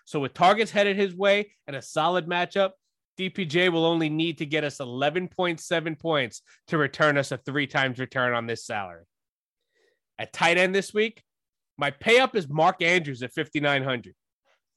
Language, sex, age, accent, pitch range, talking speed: English, male, 20-39, American, 150-215 Hz, 165 wpm